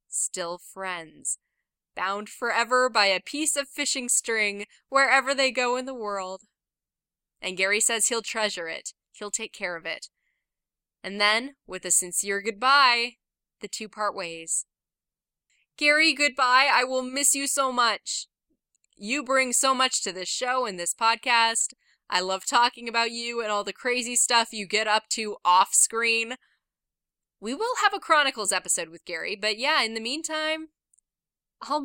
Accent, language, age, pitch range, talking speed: American, English, 10-29, 205-265 Hz, 160 wpm